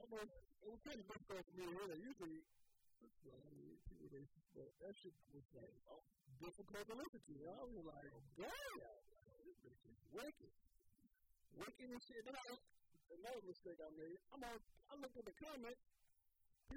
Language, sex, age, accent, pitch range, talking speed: English, male, 50-69, American, 145-225 Hz, 140 wpm